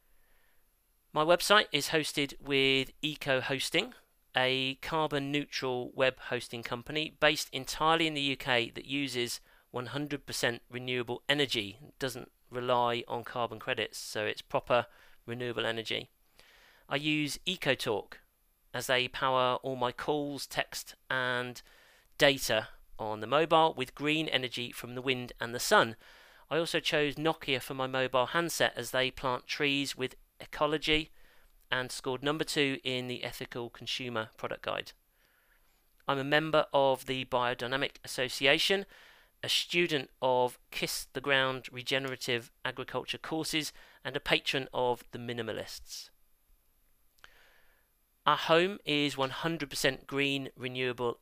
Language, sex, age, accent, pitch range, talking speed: English, male, 40-59, British, 125-150 Hz, 130 wpm